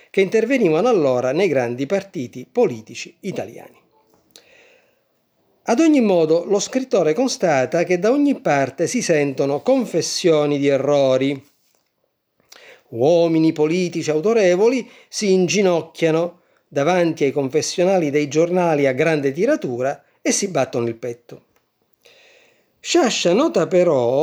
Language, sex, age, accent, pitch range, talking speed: Italian, male, 50-69, native, 150-255 Hz, 110 wpm